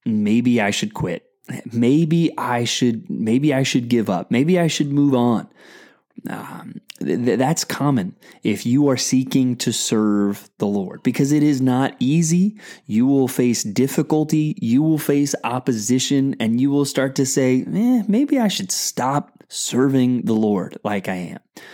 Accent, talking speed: American, 165 wpm